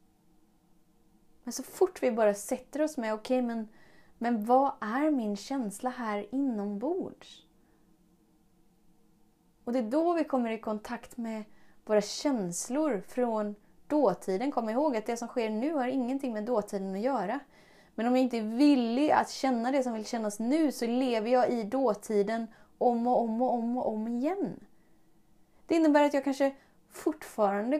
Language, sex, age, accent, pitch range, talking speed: Swedish, female, 20-39, native, 210-260 Hz, 165 wpm